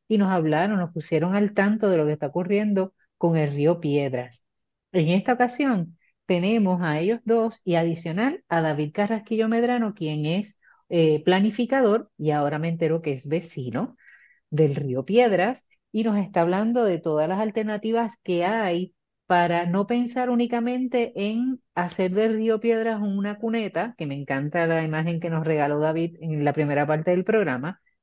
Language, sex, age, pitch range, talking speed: Spanish, female, 40-59, 160-220 Hz, 170 wpm